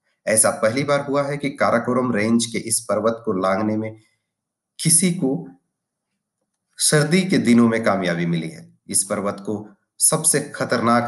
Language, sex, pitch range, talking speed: Hindi, male, 100-125 Hz, 150 wpm